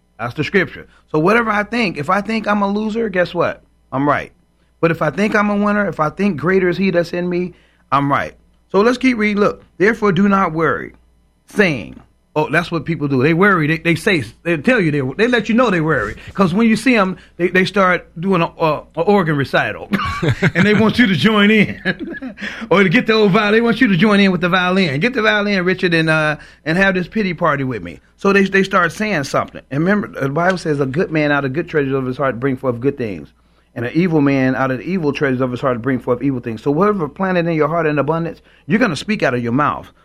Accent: American